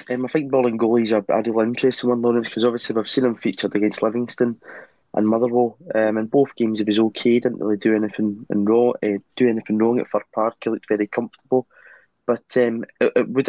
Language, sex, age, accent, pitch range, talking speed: English, male, 20-39, British, 110-120 Hz, 225 wpm